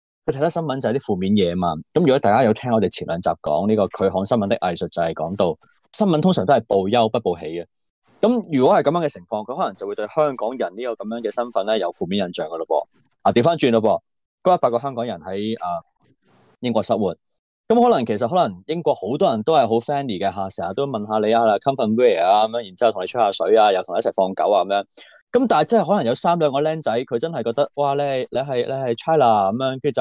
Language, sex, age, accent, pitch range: Chinese, male, 20-39, native, 100-145 Hz